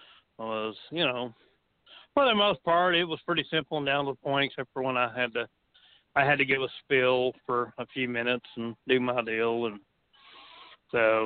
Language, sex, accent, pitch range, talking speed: English, male, American, 115-140 Hz, 205 wpm